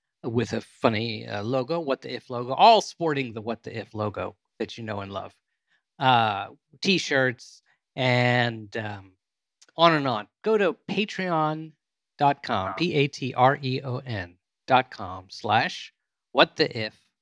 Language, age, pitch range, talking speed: English, 40-59, 115-155 Hz, 125 wpm